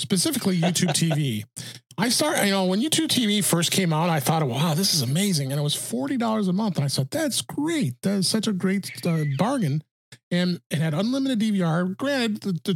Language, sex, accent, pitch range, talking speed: English, male, American, 140-190 Hz, 210 wpm